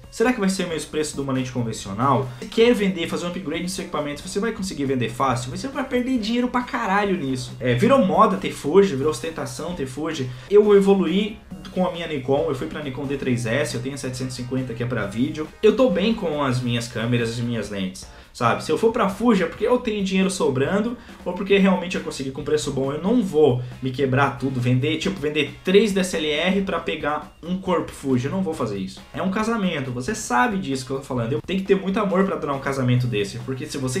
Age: 20-39